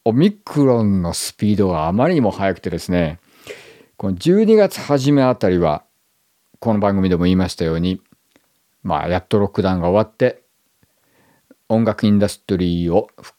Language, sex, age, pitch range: Japanese, male, 50-69, 95-145 Hz